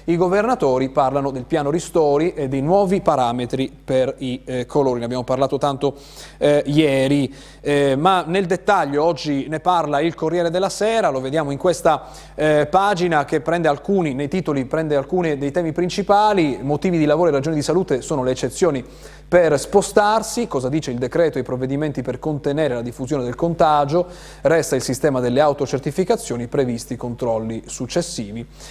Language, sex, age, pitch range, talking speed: Italian, male, 30-49, 130-165 Hz, 165 wpm